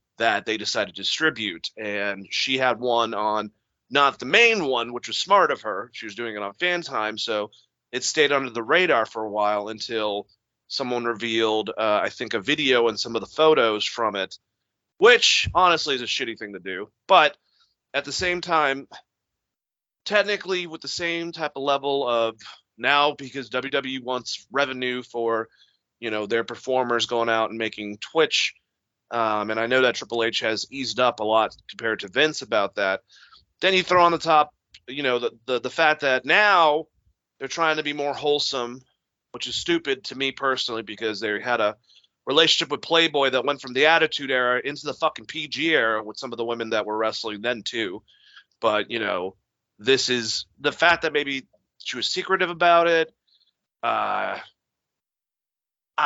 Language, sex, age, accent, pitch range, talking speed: English, male, 30-49, American, 110-150 Hz, 185 wpm